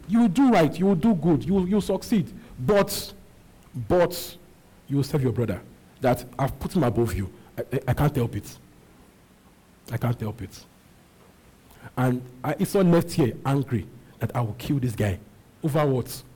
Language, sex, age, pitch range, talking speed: English, male, 50-69, 105-160 Hz, 185 wpm